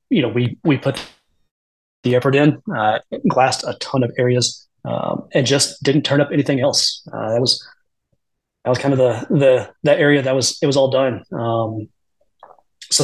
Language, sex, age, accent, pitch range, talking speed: English, male, 30-49, American, 120-145 Hz, 190 wpm